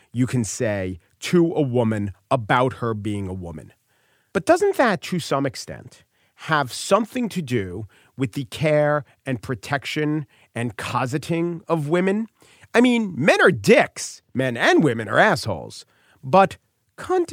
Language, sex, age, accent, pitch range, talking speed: English, male, 40-59, American, 110-170 Hz, 145 wpm